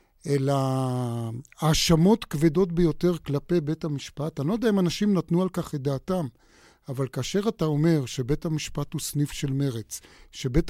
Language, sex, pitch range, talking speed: Hebrew, male, 140-170 Hz, 155 wpm